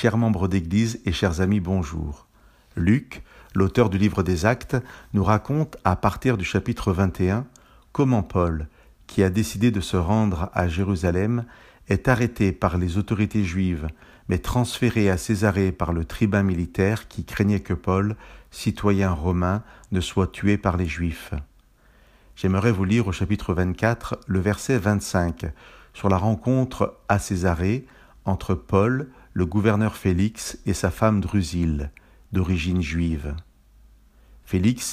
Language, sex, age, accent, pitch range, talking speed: French, male, 50-69, French, 90-110 Hz, 145 wpm